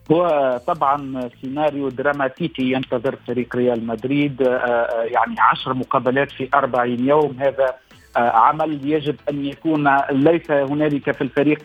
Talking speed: 120 wpm